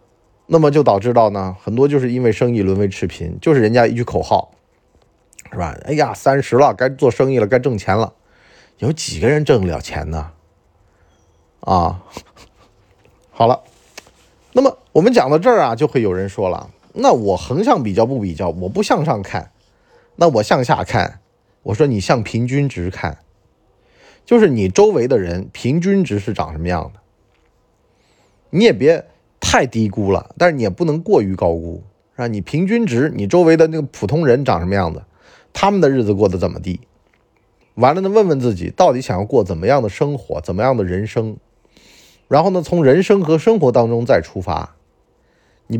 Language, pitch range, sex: Chinese, 95-140 Hz, male